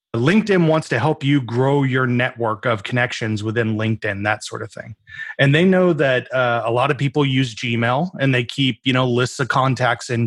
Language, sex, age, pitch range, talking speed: English, male, 30-49, 120-155 Hz, 210 wpm